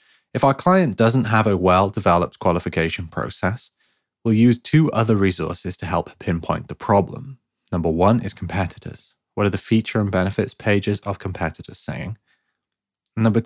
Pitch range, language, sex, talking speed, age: 90-115 Hz, English, male, 150 wpm, 20-39